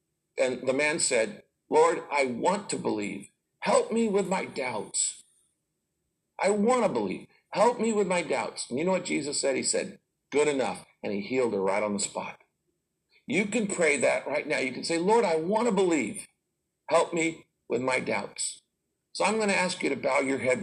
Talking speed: 205 wpm